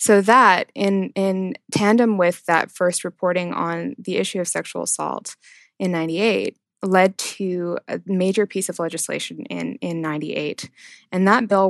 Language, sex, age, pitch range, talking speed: English, female, 20-39, 175-210 Hz, 155 wpm